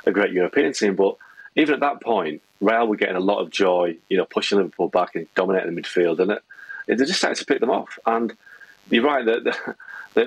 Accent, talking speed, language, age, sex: British, 235 wpm, English, 40-59, male